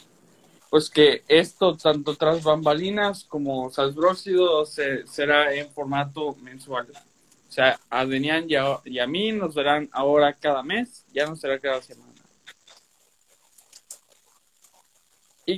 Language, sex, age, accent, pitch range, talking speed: Spanish, male, 20-39, Mexican, 140-175 Hz, 125 wpm